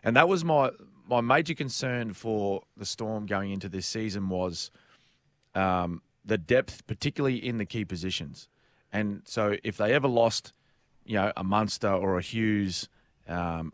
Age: 30-49